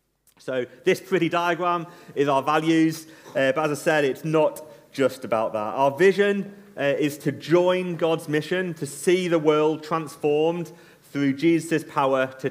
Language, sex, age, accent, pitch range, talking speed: English, male, 30-49, British, 130-165 Hz, 165 wpm